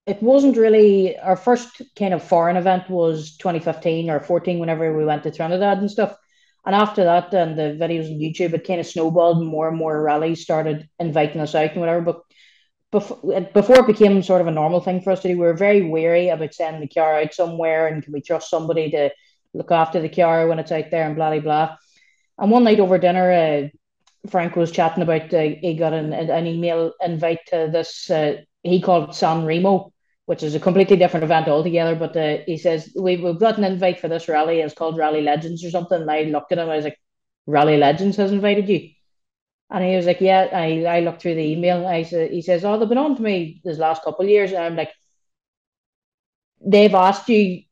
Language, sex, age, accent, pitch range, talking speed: English, female, 30-49, Irish, 160-200 Hz, 225 wpm